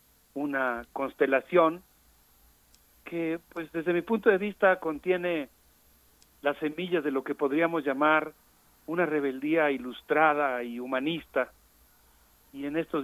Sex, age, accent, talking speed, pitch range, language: male, 50-69, Mexican, 115 wpm, 130-165 Hz, Spanish